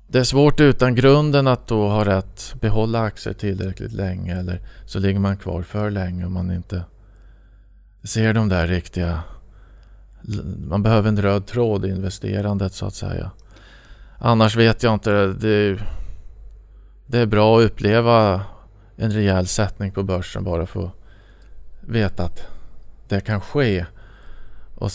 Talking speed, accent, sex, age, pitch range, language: 145 wpm, Norwegian, male, 20-39, 95-110 Hz, Swedish